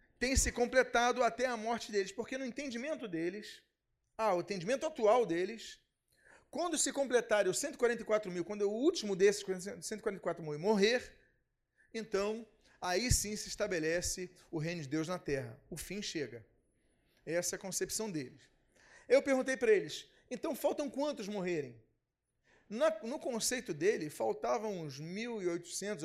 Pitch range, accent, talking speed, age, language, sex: 180-250 Hz, Brazilian, 145 wpm, 40-59, Portuguese, male